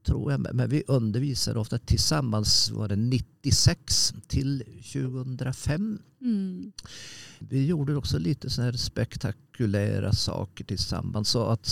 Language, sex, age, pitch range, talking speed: Swedish, male, 50-69, 105-130 Hz, 125 wpm